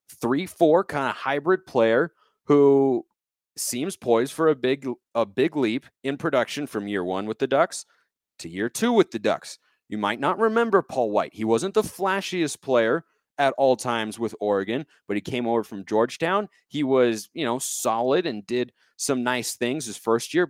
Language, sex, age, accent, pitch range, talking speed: English, male, 30-49, American, 125-155 Hz, 185 wpm